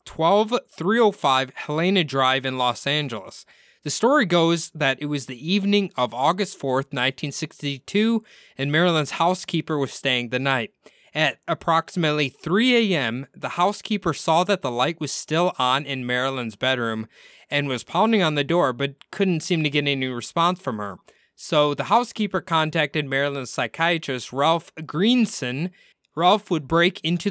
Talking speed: 160 wpm